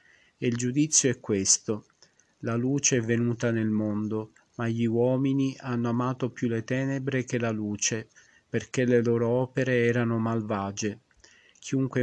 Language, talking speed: Italian, 145 wpm